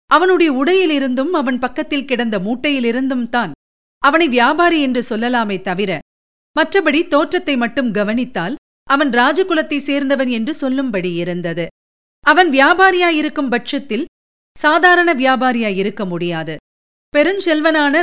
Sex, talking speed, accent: female, 95 wpm, native